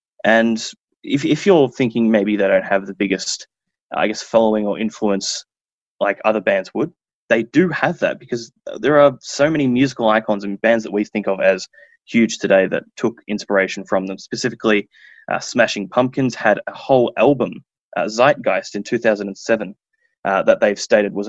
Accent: Australian